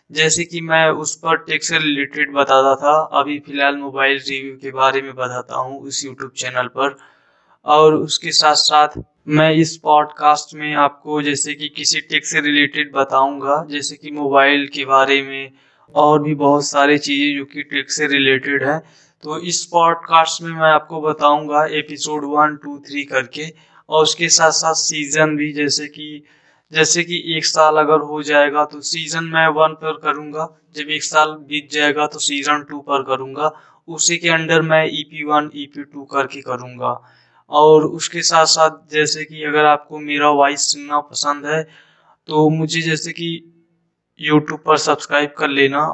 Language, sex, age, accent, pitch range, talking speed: Hindi, male, 20-39, native, 145-155 Hz, 170 wpm